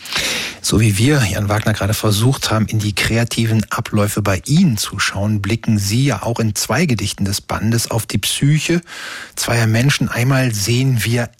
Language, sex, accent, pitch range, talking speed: German, male, German, 105-125 Hz, 175 wpm